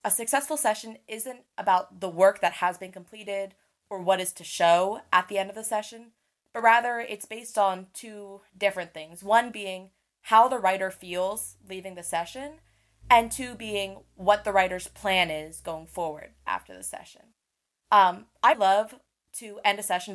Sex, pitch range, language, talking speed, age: female, 175-210 Hz, English, 175 wpm, 20-39